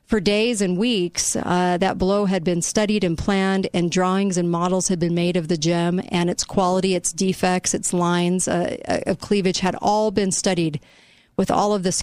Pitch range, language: 175-205 Hz, English